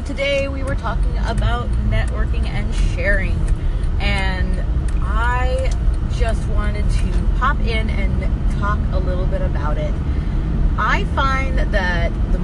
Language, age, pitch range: English, 30-49, 65-75 Hz